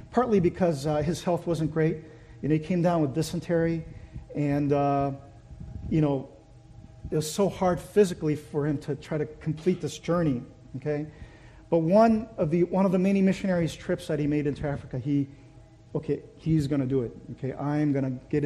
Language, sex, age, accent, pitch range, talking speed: English, male, 40-59, American, 135-170 Hz, 180 wpm